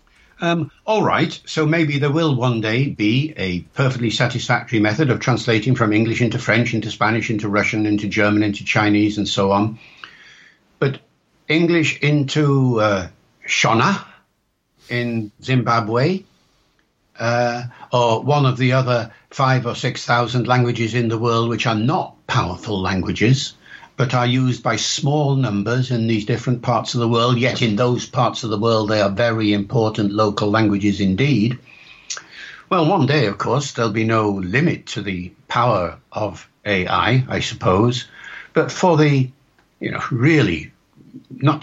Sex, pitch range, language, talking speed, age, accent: male, 105-130 Hz, English, 155 wpm, 60-79, British